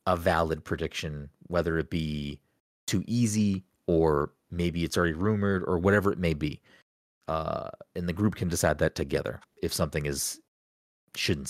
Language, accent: English, American